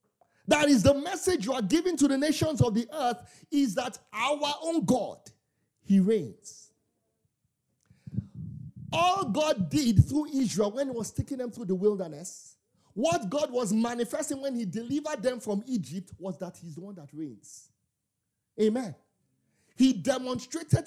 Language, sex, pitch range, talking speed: English, male, 175-275 Hz, 150 wpm